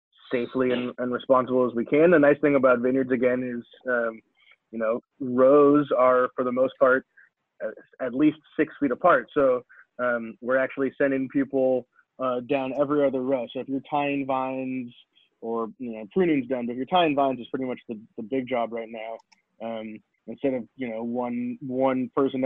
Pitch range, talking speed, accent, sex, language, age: 120-140 Hz, 190 wpm, American, male, English, 20-39